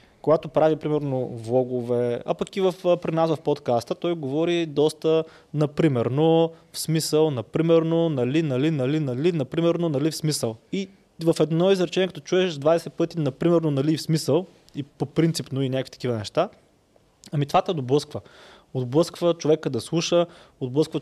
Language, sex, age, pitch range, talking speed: Bulgarian, male, 20-39, 135-165 Hz, 155 wpm